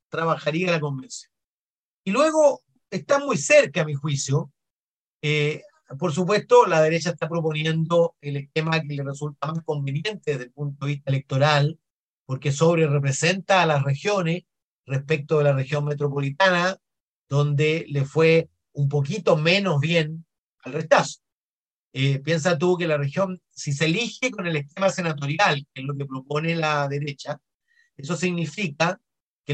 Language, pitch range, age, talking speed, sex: Spanish, 140-175 Hz, 40-59, 150 wpm, male